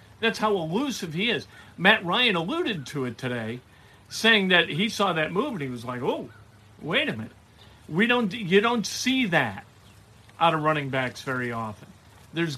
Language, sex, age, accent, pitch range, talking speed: English, male, 50-69, American, 120-180 Hz, 180 wpm